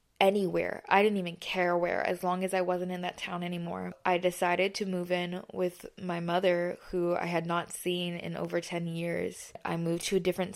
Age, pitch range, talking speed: 20-39, 175-185 Hz, 210 wpm